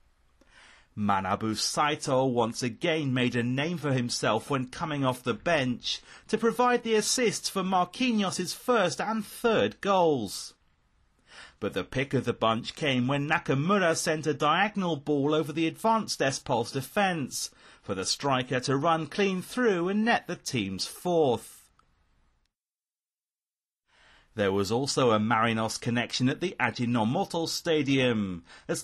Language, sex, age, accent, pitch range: Japanese, male, 30-49, British, 120-195 Hz